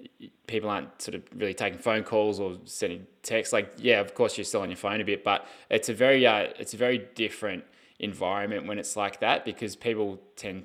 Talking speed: 220 wpm